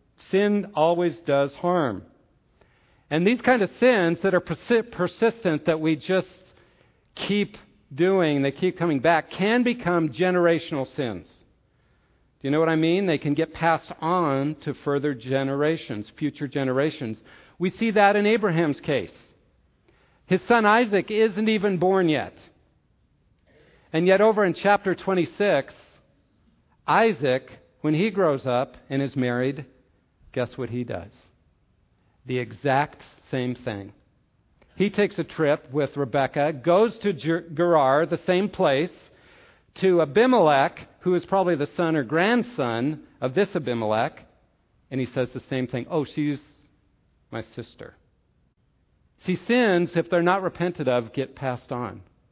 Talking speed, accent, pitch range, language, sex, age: 140 wpm, American, 130-180 Hz, English, male, 50-69